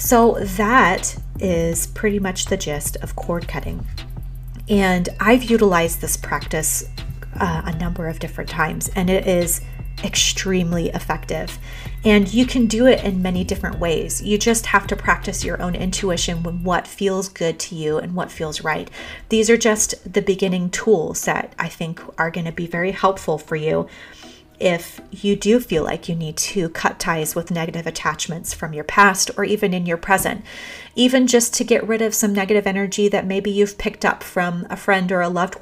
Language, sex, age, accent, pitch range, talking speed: English, female, 30-49, American, 165-200 Hz, 185 wpm